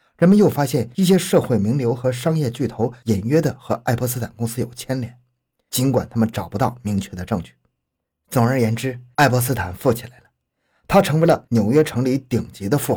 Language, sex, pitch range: Chinese, male, 110-145 Hz